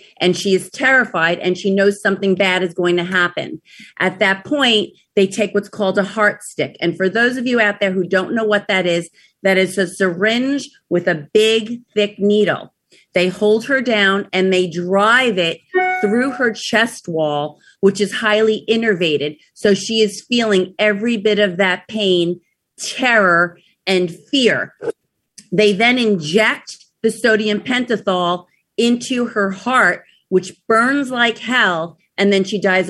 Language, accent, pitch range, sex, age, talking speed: English, American, 190-225 Hz, female, 40-59, 165 wpm